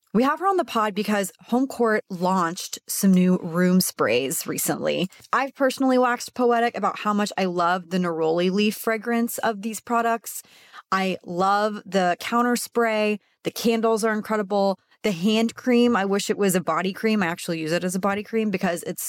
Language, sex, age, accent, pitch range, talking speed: English, female, 30-49, American, 180-225 Hz, 190 wpm